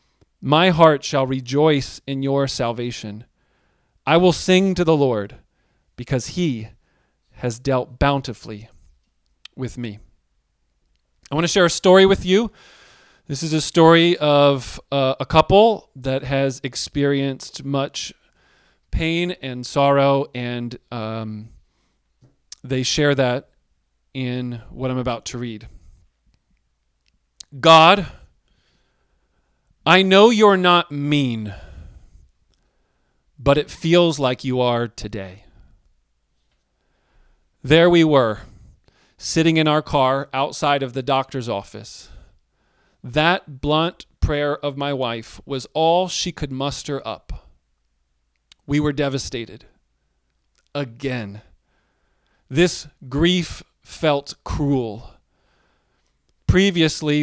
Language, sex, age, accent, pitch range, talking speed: English, male, 40-59, American, 100-150 Hz, 105 wpm